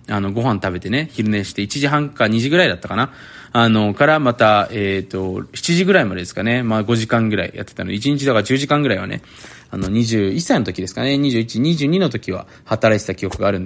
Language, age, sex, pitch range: Japanese, 20-39, male, 105-155 Hz